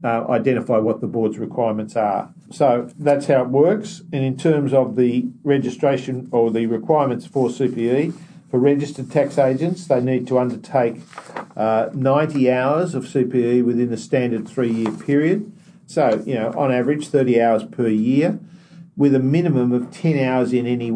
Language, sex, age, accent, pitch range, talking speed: English, male, 50-69, Australian, 110-140 Hz, 170 wpm